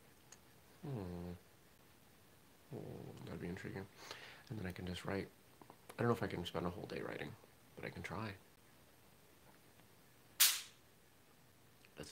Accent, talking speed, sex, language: American, 135 wpm, male, English